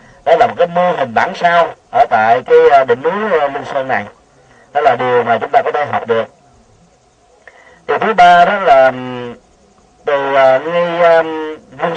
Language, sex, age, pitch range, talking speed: Vietnamese, male, 40-59, 155-240 Hz, 165 wpm